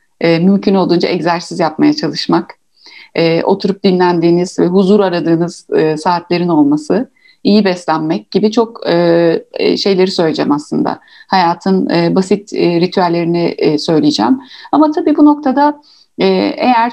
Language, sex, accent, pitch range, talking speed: Turkish, female, native, 165-210 Hz, 100 wpm